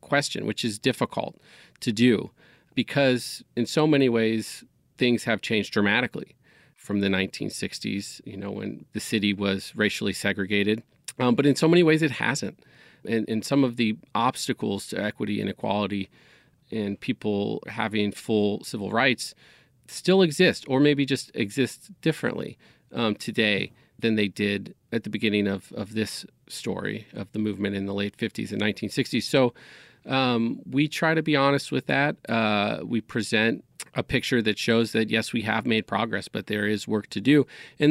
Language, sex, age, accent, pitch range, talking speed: English, male, 40-59, American, 105-130 Hz, 170 wpm